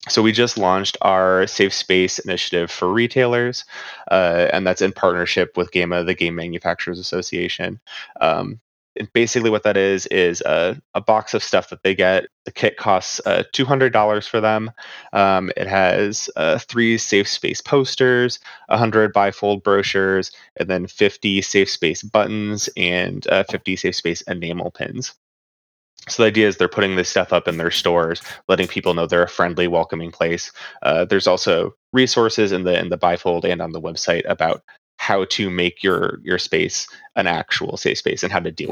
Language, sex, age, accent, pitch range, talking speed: English, male, 20-39, American, 90-115 Hz, 175 wpm